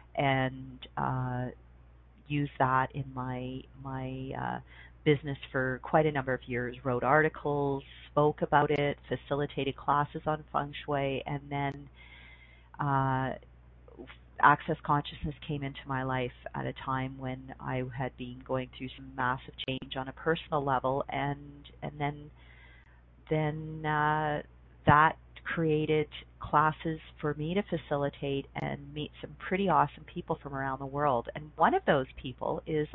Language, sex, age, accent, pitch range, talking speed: English, female, 40-59, American, 130-165 Hz, 140 wpm